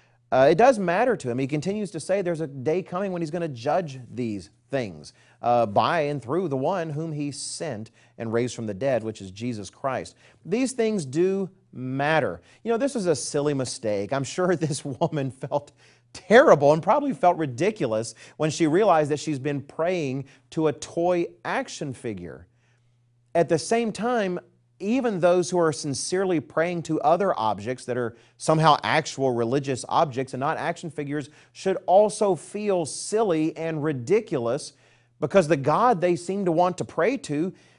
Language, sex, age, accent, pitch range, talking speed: English, male, 40-59, American, 120-175 Hz, 175 wpm